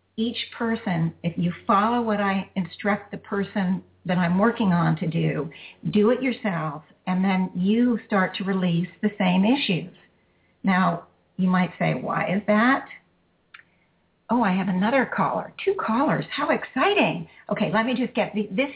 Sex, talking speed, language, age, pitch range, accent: female, 160 wpm, English, 50-69, 180-225 Hz, American